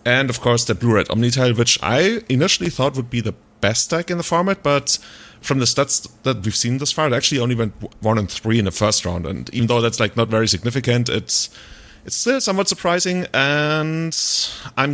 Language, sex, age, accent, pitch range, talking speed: English, male, 30-49, German, 110-140 Hz, 215 wpm